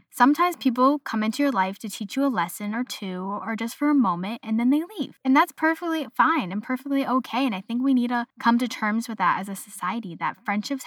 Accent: American